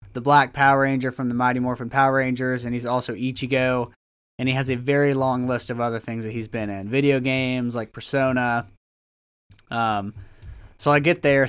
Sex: male